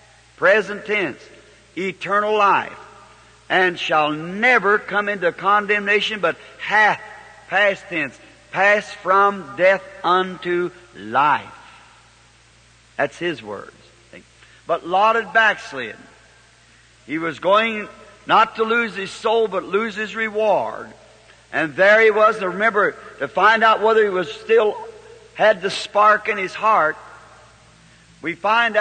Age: 60-79